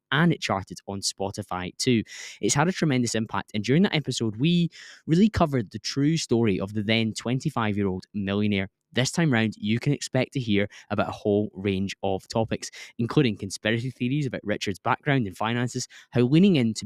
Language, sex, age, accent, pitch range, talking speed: English, male, 10-29, British, 105-140 Hz, 180 wpm